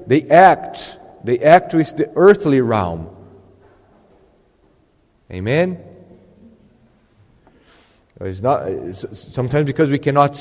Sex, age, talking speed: male, 40-59, 90 wpm